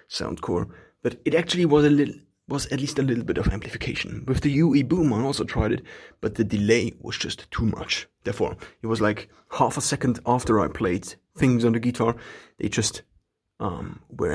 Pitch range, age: 110-135 Hz, 30-49